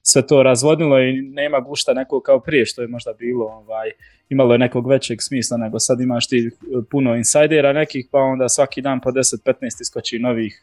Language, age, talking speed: Croatian, 20-39, 190 wpm